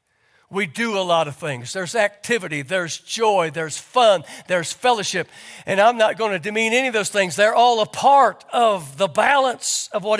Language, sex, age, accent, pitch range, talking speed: English, male, 60-79, American, 165-245 Hz, 190 wpm